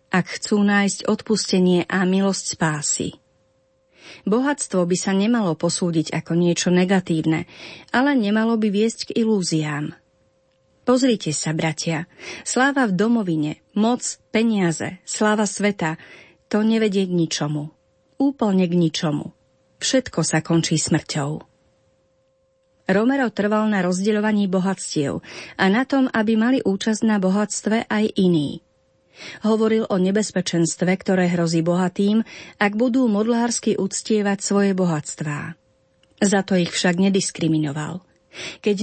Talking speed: 115 wpm